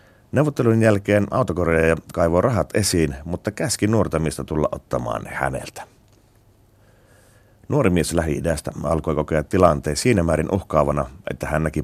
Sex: male